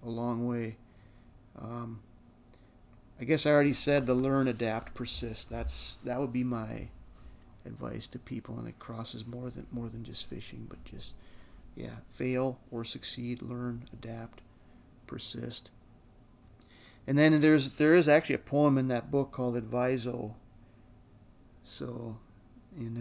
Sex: male